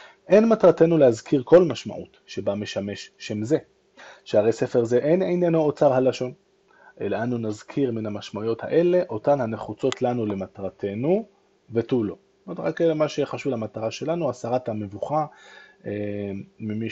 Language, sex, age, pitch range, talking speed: Hebrew, male, 20-39, 110-150 Hz, 140 wpm